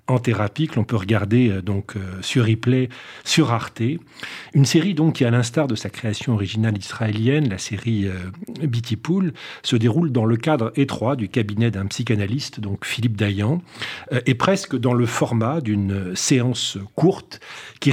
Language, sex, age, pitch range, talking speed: French, male, 40-59, 110-140 Hz, 175 wpm